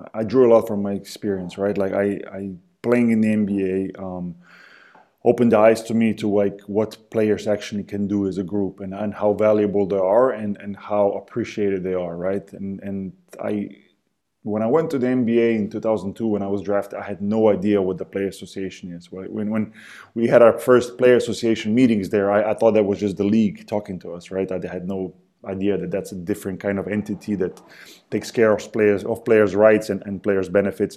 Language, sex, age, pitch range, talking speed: English, male, 20-39, 100-115 Hz, 220 wpm